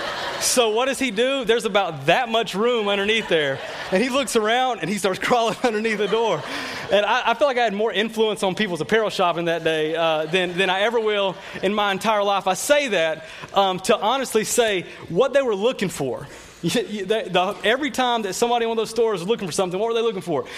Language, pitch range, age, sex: English, 185-230 Hz, 30-49, male